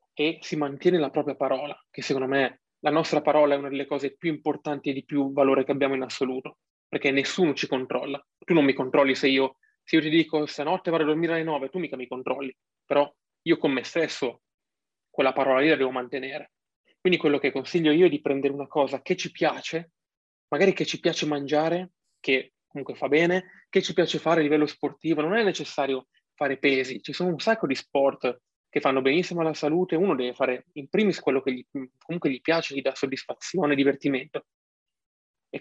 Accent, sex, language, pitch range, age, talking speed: native, male, Italian, 140-165 Hz, 20-39, 205 wpm